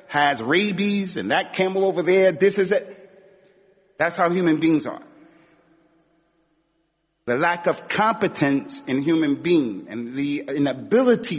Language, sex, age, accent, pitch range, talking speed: English, male, 40-59, American, 150-195 Hz, 130 wpm